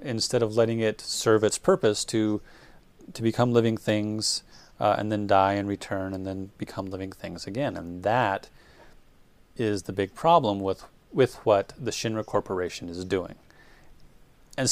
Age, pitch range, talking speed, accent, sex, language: 30-49, 100-120 Hz, 160 wpm, American, male, English